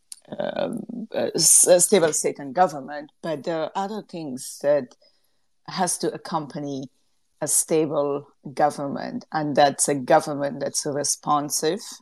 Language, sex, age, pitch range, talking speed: English, female, 40-59, 145-170 Hz, 120 wpm